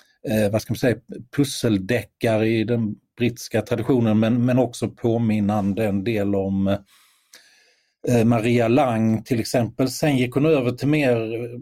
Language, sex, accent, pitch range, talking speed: Swedish, male, native, 100-120 Hz, 140 wpm